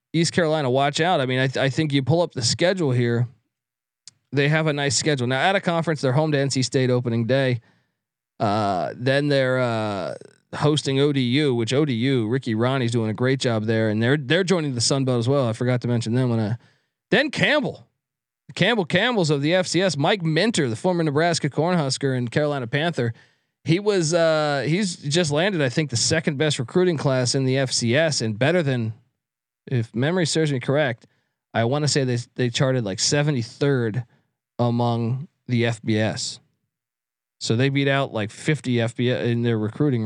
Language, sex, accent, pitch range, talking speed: English, male, American, 120-155 Hz, 185 wpm